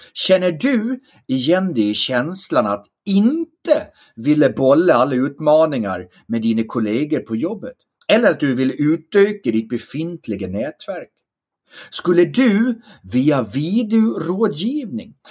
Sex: male